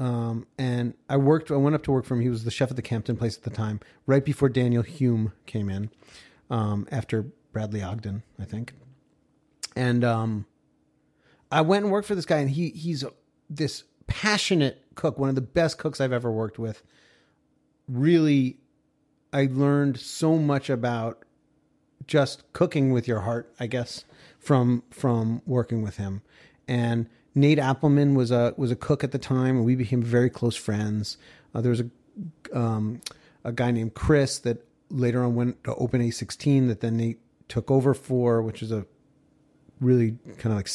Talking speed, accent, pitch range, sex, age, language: 180 wpm, American, 115-140 Hz, male, 30-49, English